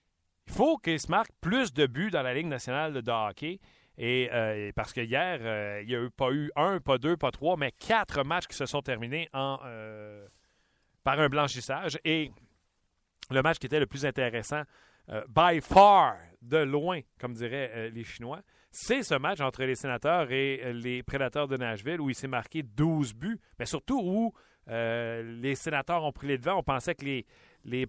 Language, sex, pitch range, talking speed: French, male, 125-165 Hz, 200 wpm